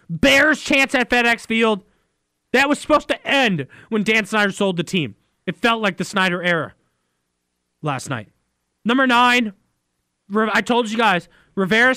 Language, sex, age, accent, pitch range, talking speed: English, male, 20-39, American, 180-240 Hz, 155 wpm